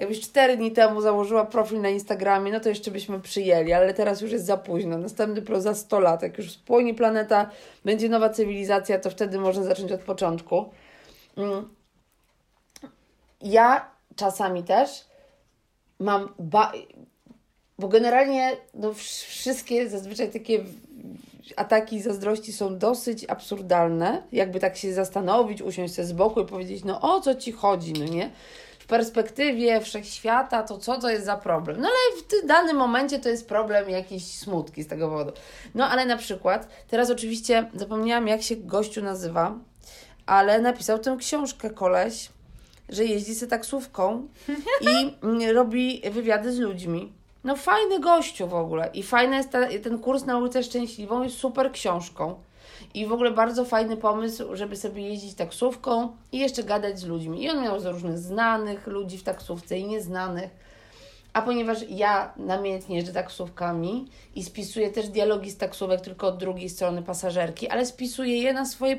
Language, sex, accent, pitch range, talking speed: Polish, female, native, 190-245 Hz, 155 wpm